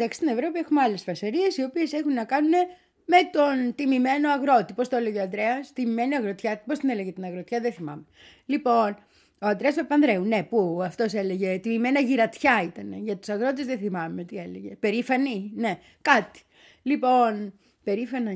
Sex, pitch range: female, 195-275 Hz